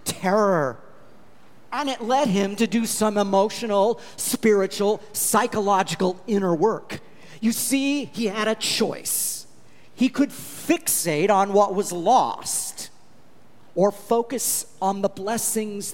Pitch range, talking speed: 160-225 Hz, 115 wpm